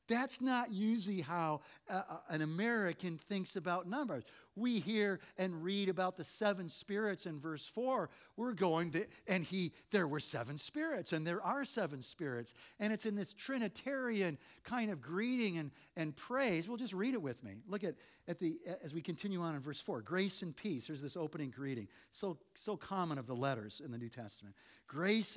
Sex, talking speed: male, 190 wpm